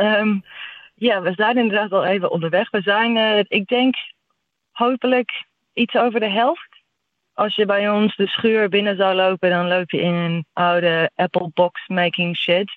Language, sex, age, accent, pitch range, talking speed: Dutch, female, 20-39, Dutch, 160-185 Hz, 170 wpm